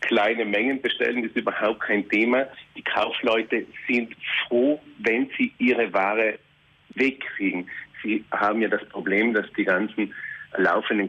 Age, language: 50-69, German